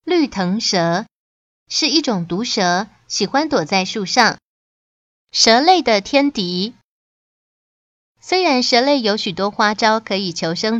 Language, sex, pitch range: Chinese, female, 195-270 Hz